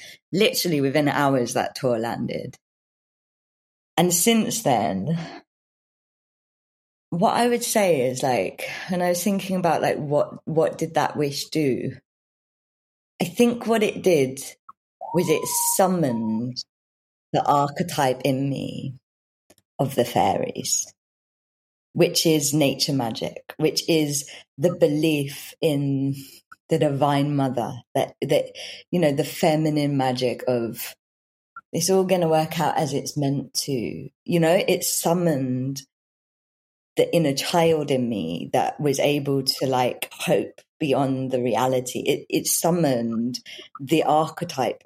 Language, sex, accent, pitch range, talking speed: English, female, British, 135-170 Hz, 125 wpm